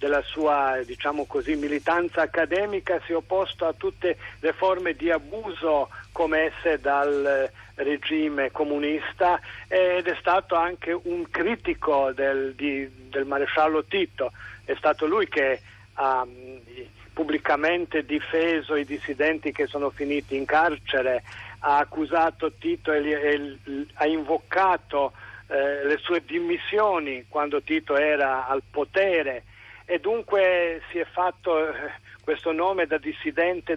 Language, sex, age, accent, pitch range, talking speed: Italian, male, 50-69, native, 145-170 Hz, 120 wpm